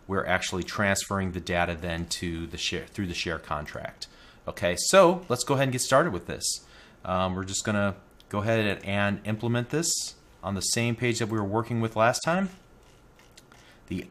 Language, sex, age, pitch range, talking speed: English, male, 30-49, 95-120 Hz, 185 wpm